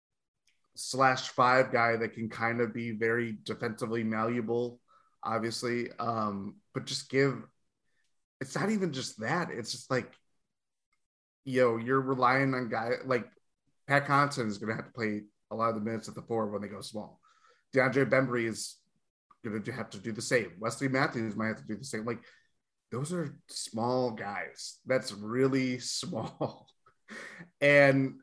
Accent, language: American, English